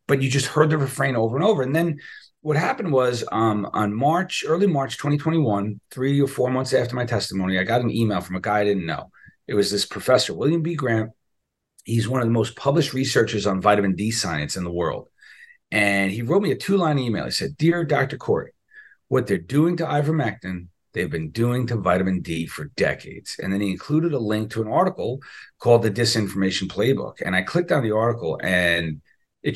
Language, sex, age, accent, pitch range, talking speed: English, male, 40-59, American, 105-150 Hz, 210 wpm